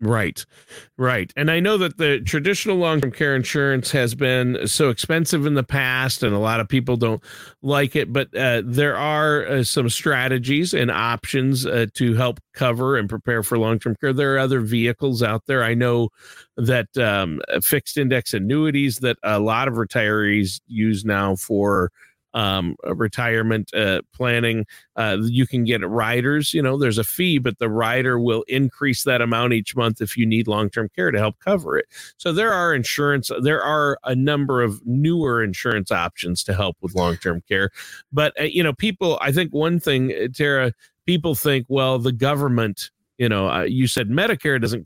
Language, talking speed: English, 185 wpm